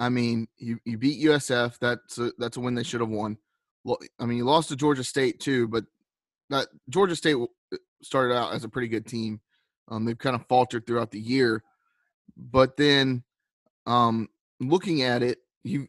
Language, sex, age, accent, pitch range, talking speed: English, male, 30-49, American, 120-150 Hz, 190 wpm